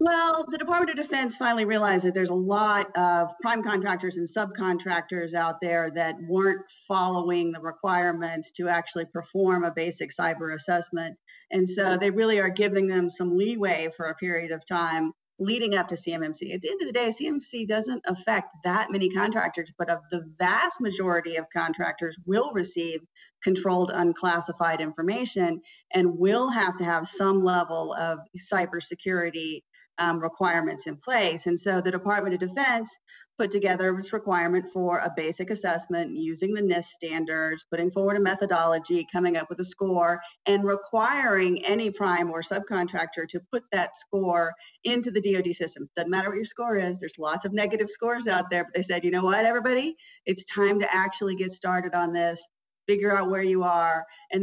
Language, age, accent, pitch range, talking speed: English, 40-59, American, 170-200 Hz, 175 wpm